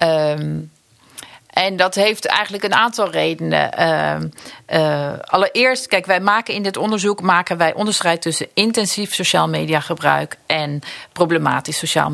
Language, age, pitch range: Dutch, 40-59, 135-180 Hz